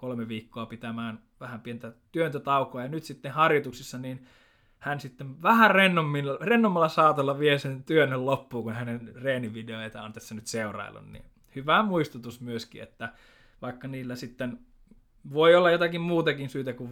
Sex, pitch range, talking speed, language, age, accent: male, 120-150 Hz, 145 wpm, Finnish, 20-39, native